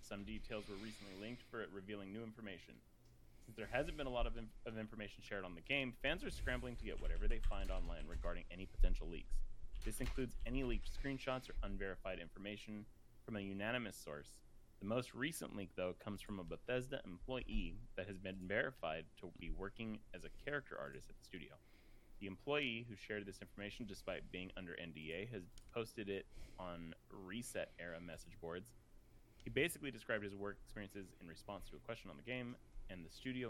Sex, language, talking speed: male, English, 190 wpm